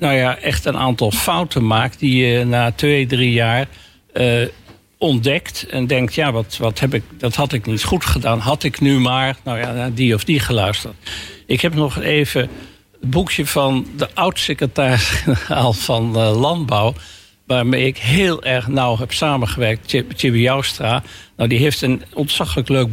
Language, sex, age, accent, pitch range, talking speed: Dutch, male, 60-79, Dutch, 120-145 Hz, 175 wpm